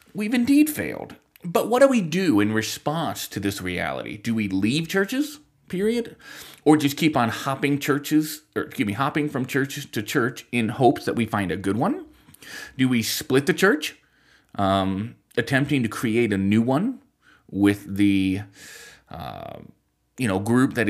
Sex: male